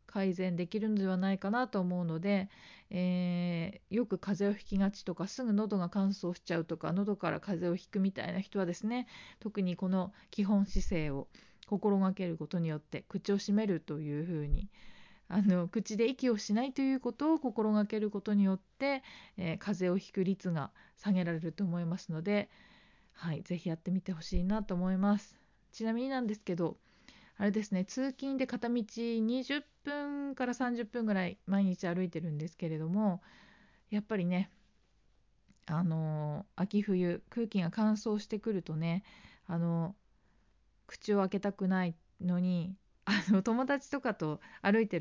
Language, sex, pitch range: Japanese, female, 175-215 Hz